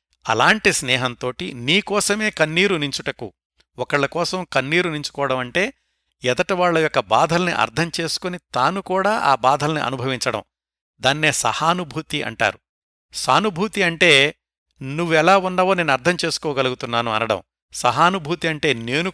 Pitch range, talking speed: 125-175 Hz, 105 wpm